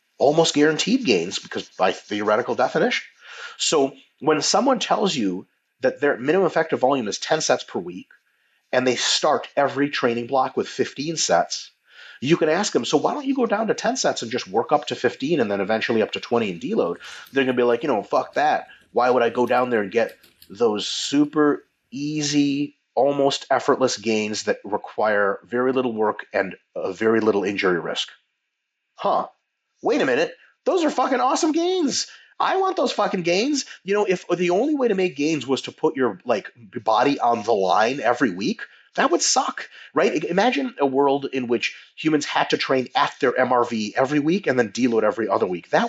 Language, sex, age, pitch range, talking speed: English, male, 30-49, 125-185 Hz, 195 wpm